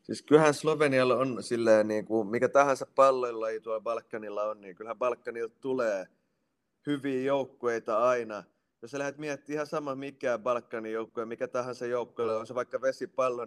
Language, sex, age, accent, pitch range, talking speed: Finnish, male, 30-49, native, 115-135 Hz, 155 wpm